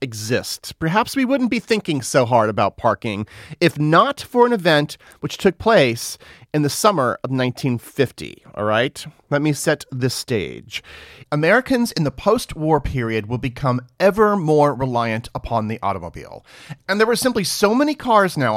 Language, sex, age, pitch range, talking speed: English, male, 40-59, 125-210 Hz, 165 wpm